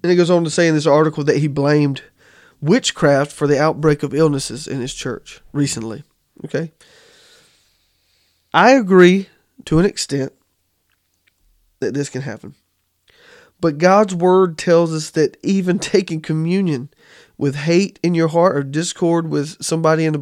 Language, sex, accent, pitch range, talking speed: English, male, American, 135-165 Hz, 155 wpm